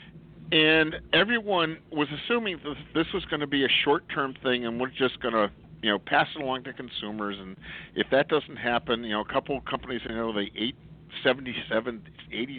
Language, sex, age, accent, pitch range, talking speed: English, male, 50-69, American, 115-155 Hz, 205 wpm